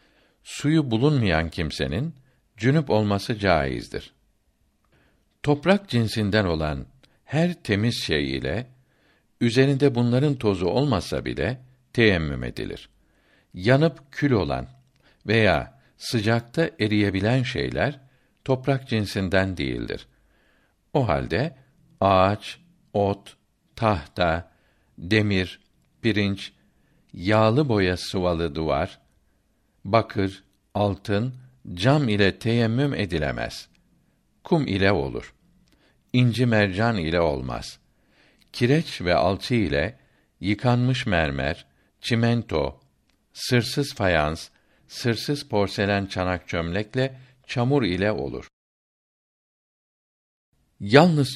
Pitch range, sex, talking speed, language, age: 95-130 Hz, male, 85 wpm, Turkish, 60-79